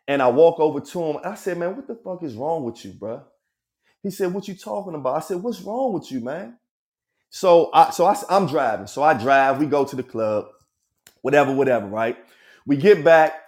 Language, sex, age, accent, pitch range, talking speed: English, male, 30-49, American, 135-180 Hz, 225 wpm